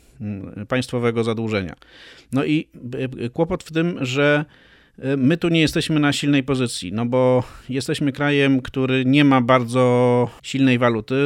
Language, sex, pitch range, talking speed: Polish, male, 120-135 Hz, 135 wpm